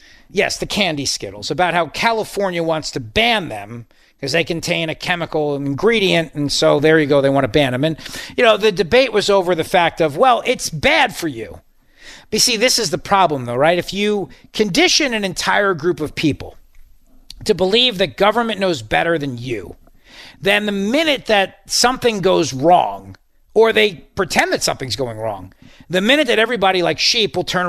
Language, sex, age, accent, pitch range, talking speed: English, male, 40-59, American, 155-205 Hz, 190 wpm